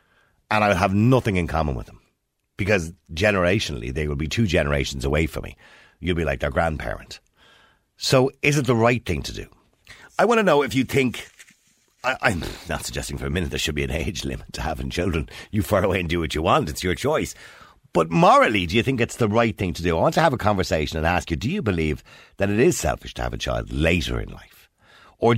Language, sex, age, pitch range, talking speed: English, male, 50-69, 75-105 Hz, 235 wpm